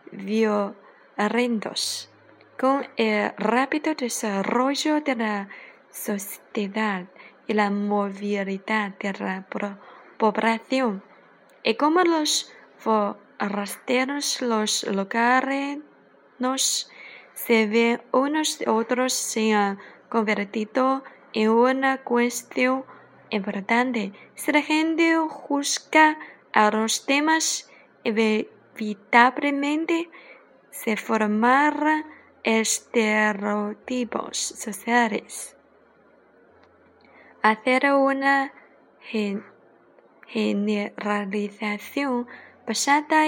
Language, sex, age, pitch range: Chinese, female, 20-39, 215-275 Hz